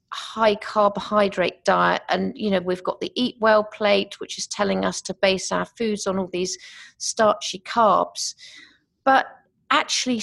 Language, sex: English, female